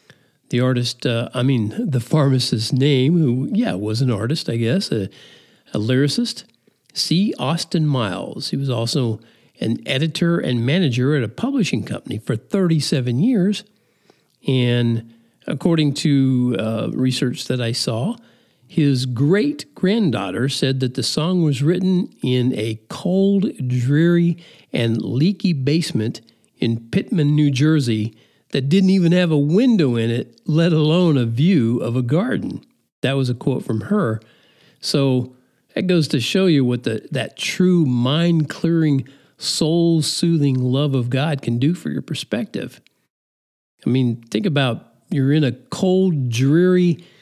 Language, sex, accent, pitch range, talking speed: English, male, American, 125-170 Hz, 140 wpm